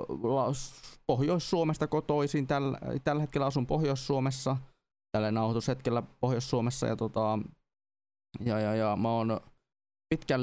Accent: native